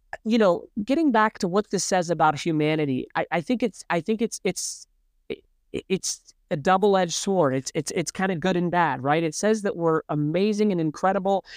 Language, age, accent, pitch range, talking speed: English, 40-59, American, 160-200 Hz, 200 wpm